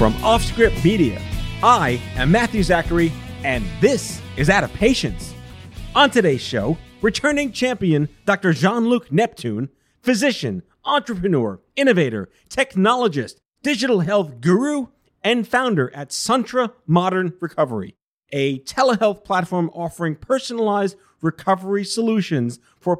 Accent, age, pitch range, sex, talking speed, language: American, 40-59, 160-235 Hz, male, 110 wpm, English